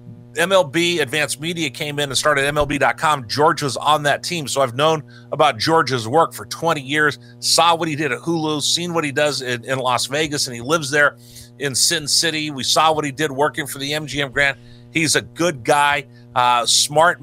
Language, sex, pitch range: English, male, 125-160 Hz